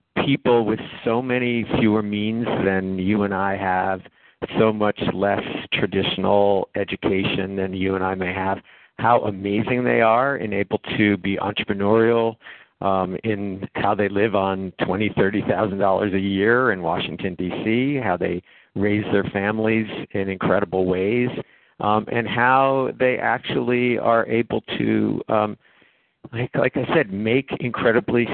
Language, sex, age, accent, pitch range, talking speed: English, male, 50-69, American, 95-115 Hz, 145 wpm